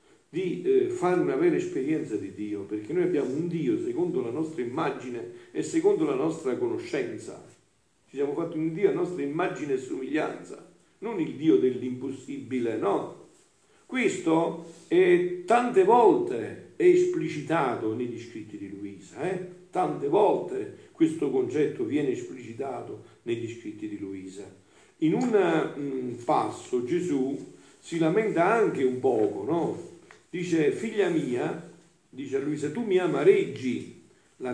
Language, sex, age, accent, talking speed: Italian, male, 50-69, native, 135 wpm